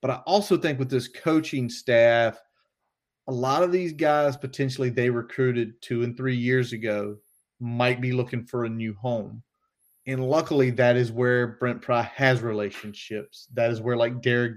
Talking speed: 175 wpm